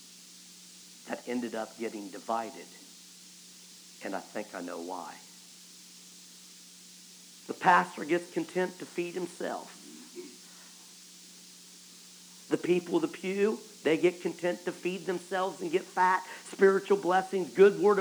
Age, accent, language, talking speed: 50-69, American, English, 115 wpm